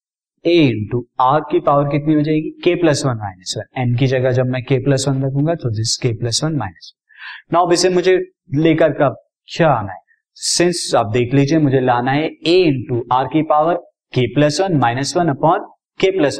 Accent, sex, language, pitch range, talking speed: native, male, Hindi, 130-165 Hz, 145 wpm